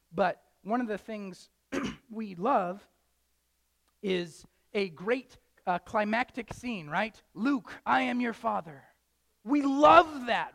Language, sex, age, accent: English, male, 30-49, American